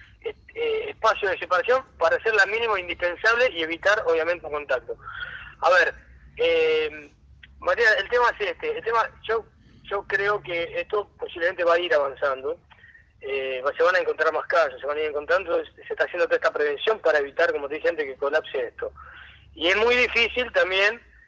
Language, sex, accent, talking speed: Spanish, male, Argentinian, 185 wpm